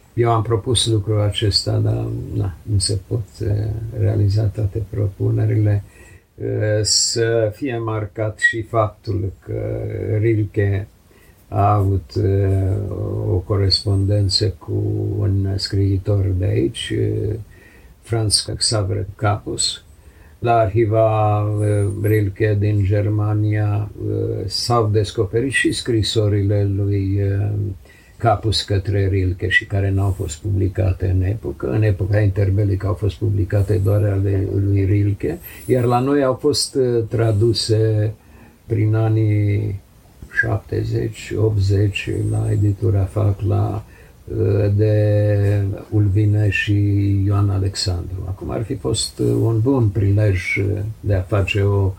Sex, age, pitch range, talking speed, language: male, 50-69, 100-110 Hz, 105 wpm, Romanian